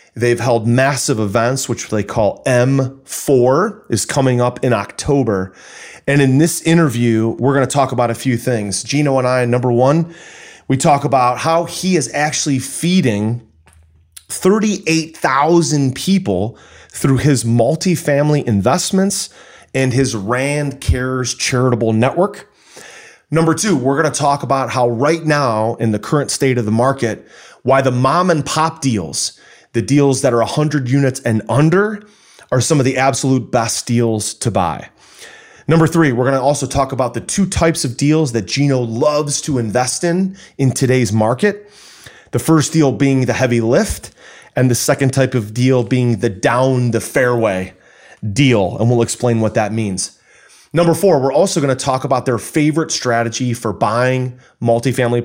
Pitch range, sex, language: 115-150 Hz, male, English